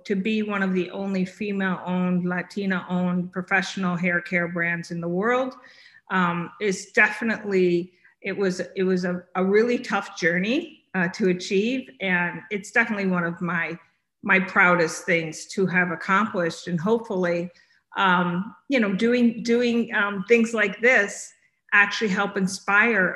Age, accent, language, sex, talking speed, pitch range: 50-69, American, English, female, 145 wpm, 180-210 Hz